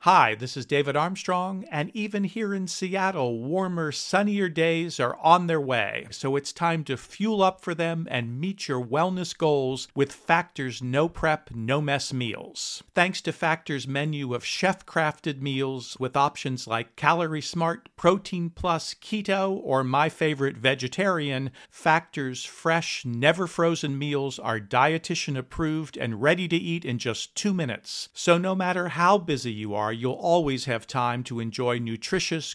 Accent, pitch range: American, 130-175 Hz